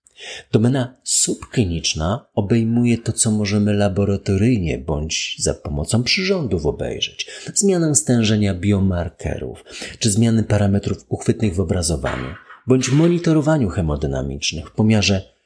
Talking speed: 105 wpm